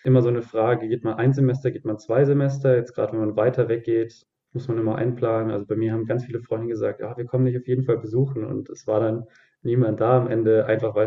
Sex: male